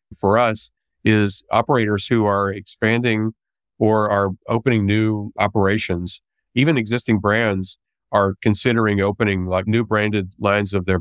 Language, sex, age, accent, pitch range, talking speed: English, male, 40-59, American, 100-110 Hz, 130 wpm